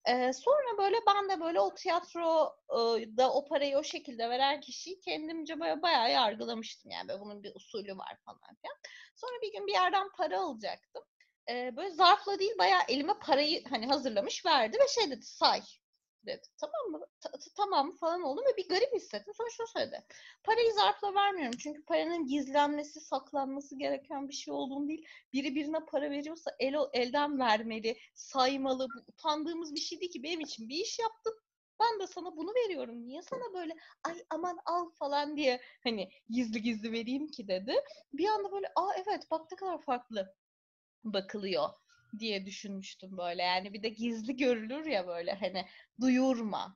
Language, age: Turkish, 30-49